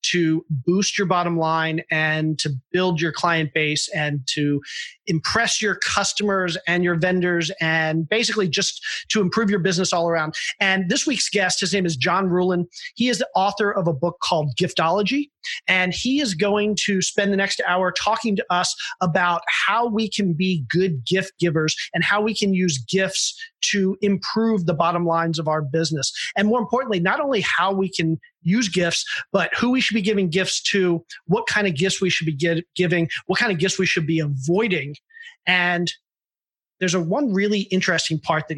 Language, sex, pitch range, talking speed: English, male, 165-200 Hz, 190 wpm